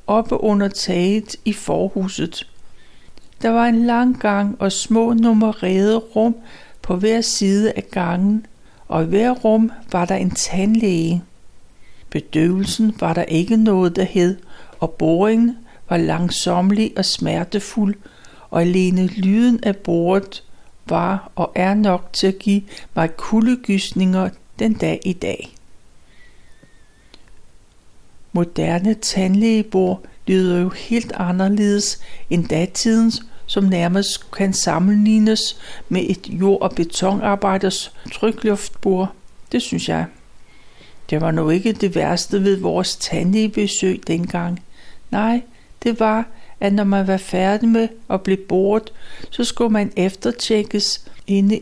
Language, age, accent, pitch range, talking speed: Danish, 60-79, native, 180-220 Hz, 125 wpm